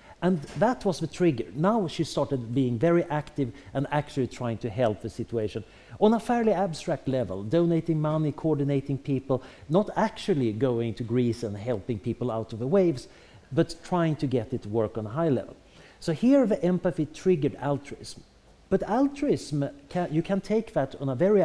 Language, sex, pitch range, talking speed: English, male, 120-170 Hz, 185 wpm